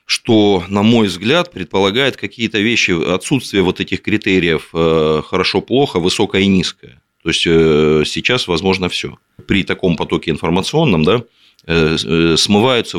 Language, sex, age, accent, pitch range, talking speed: Russian, male, 30-49, native, 80-95 Hz, 115 wpm